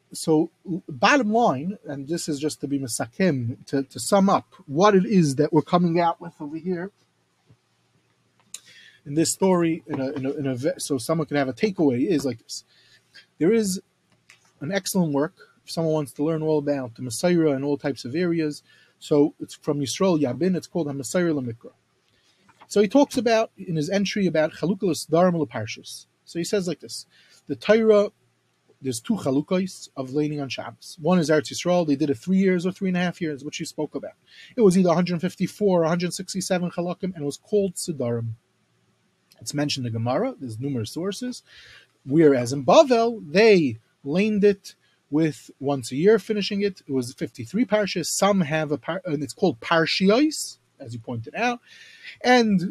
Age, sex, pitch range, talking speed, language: 30-49, male, 140-190 Hz, 185 wpm, English